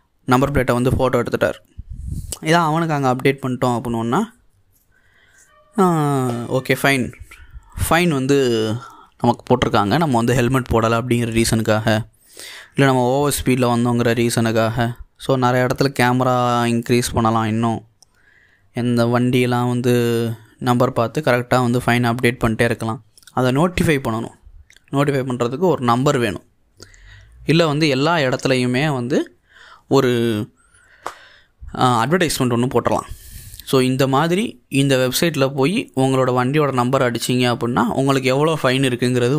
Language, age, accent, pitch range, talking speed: Tamil, 20-39, native, 115-135 Hz, 120 wpm